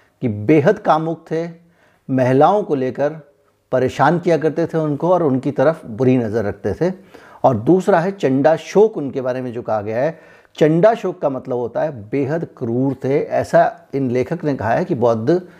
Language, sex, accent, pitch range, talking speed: Hindi, male, native, 130-160 Hz, 175 wpm